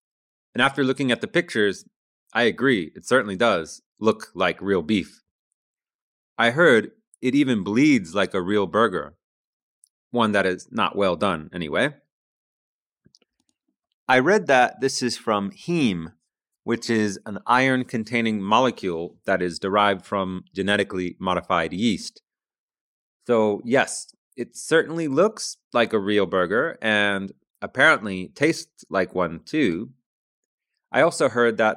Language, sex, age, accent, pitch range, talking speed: English, male, 30-49, American, 100-135 Hz, 130 wpm